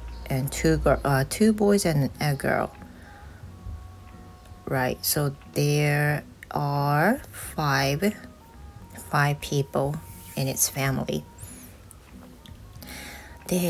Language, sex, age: Japanese, female, 30-49